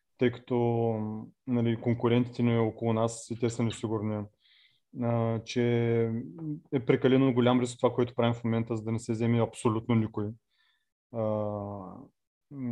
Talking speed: 135 wpm